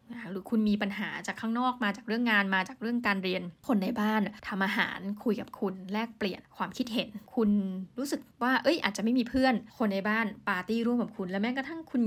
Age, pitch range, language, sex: 20-39, 200-245 Hz, Thai, female